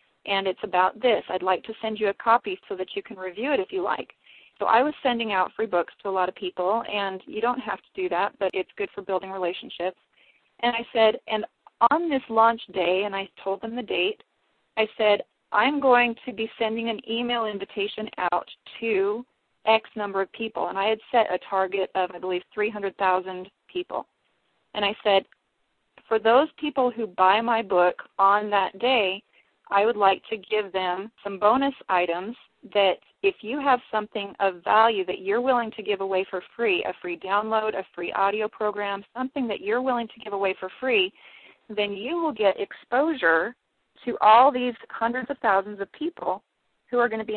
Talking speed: 200 wpm